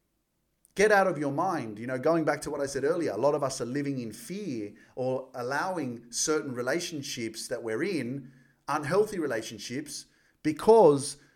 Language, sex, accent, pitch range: English, male, Australian, 135-195 Hz